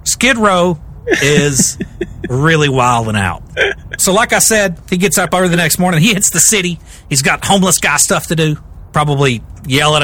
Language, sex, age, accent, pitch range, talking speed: English, male, 40-59, American, 130-180 Hz, 185 wpm